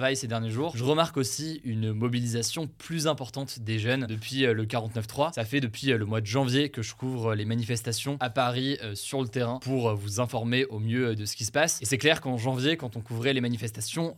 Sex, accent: male, French